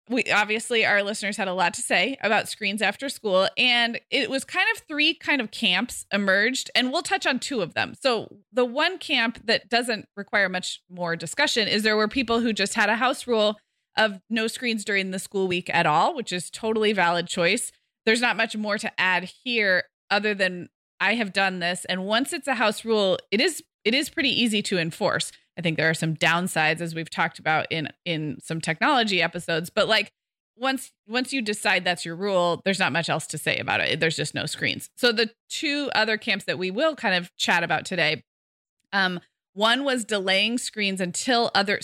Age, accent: 20-39, American